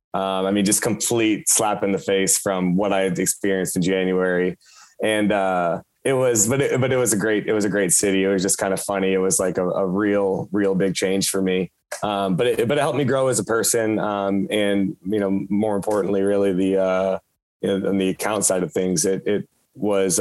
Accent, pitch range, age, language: American, 95-105 Hz, 20-39, English